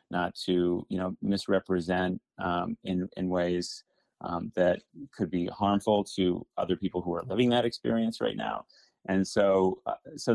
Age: 30-49